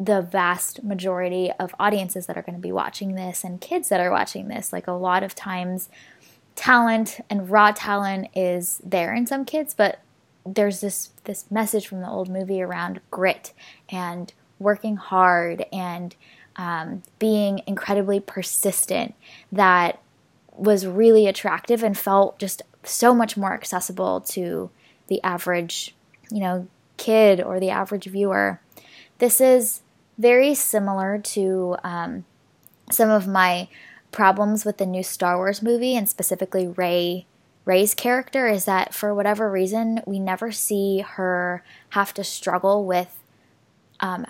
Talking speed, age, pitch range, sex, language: 145 wpm, 10-29, 180-210 Hz, female, English